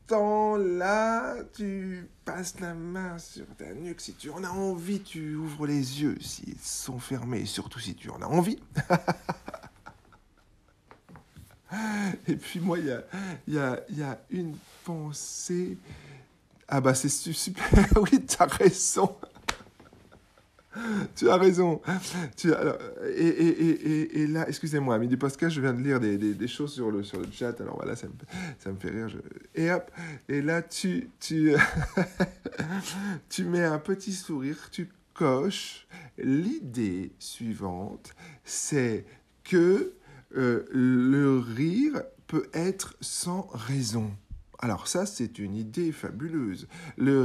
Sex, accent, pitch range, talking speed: male, French, 130-185 Hz, 145 wpm